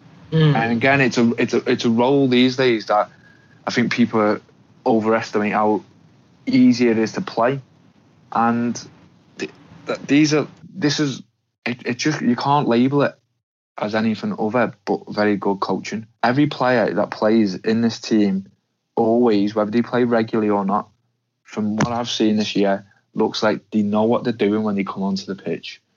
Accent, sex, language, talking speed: British, male, English, 175 wpm